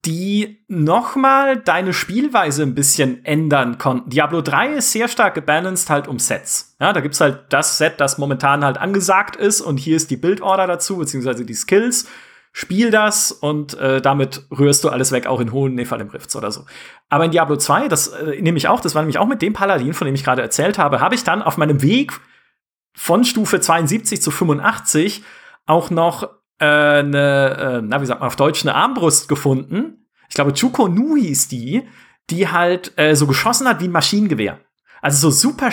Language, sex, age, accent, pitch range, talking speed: German, male, 40-59, German, 140-200 Hz, 200 wpm